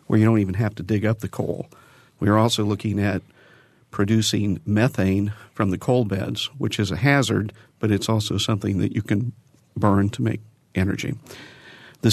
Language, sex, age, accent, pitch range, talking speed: English, male, 50-69, American, 100-115 Hz, 185 wpm